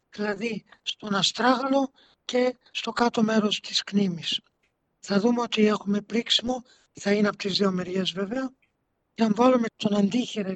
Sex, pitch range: male, 205-235 Hz